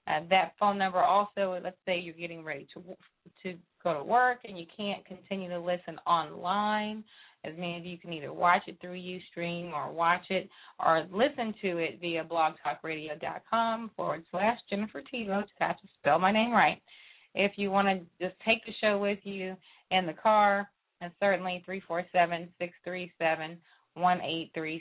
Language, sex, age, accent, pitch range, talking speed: English, female, 20-39, American, 170-200 Hz, 185 wpm